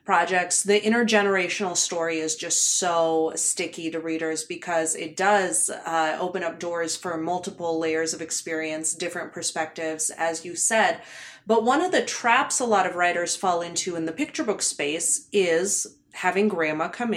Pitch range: 170-225 Hz